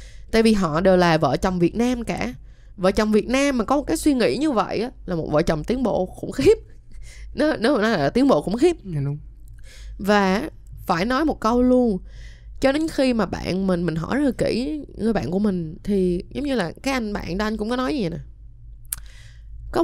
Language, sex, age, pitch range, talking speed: Vietnamese, female, 10-29, 175-235 Hz, 225 wpm